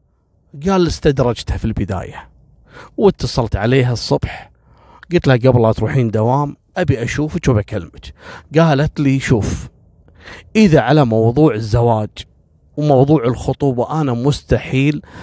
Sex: male